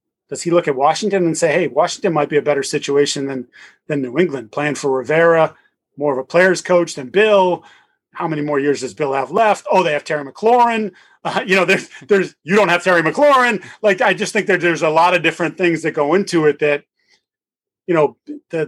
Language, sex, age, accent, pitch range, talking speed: English, male, 30-49, American, 150-175 Hz, 225 wpm